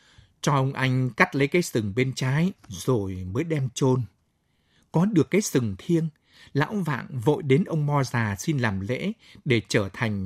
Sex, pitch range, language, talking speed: male, 110-160 Hz, Vietnamese, 180 wpm